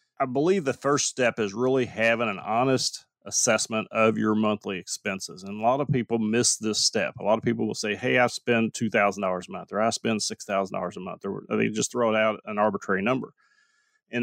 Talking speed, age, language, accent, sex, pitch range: 220 wpm, 30-49, English, American, male, 105-125 Hz